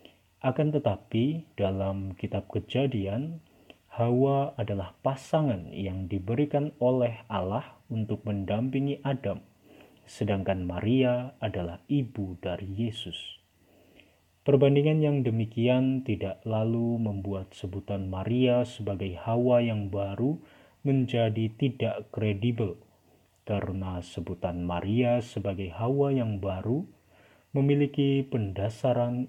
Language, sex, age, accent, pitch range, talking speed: Indonesian, male, 30-49, native, 100-125 Hz, 90 wpm